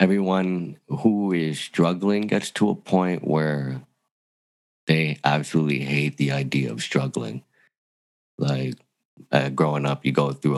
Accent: American